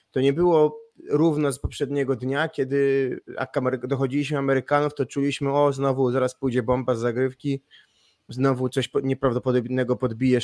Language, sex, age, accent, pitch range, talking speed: Polish, male, 20-39, native, 125-150 Hz, 130 wpm